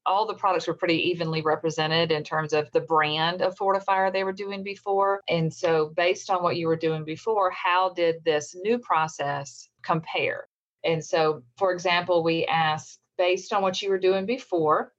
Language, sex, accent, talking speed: English, female, American, 185 wpm